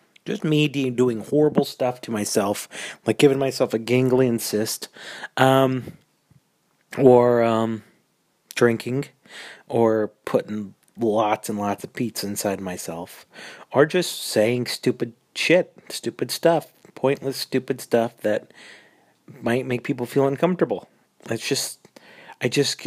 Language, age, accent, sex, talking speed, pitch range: English, 30-49, American, male, 120 wpm, 110-135 Hz